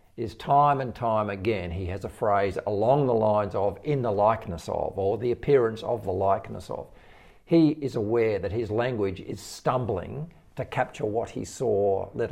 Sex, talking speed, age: male, 185 wpm, 50-69